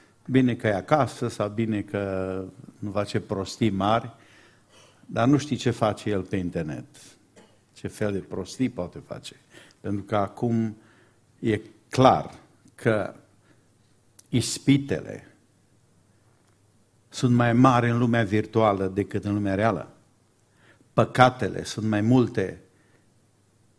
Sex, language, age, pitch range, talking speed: male, Romanian, 50-69, 105-125 Hz, 115 wpm